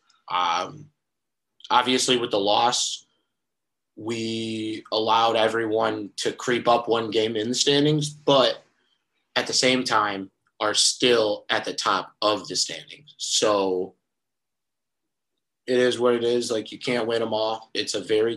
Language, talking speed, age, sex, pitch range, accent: English, 145 wpm, 20-39, male, 100-120 Hz, American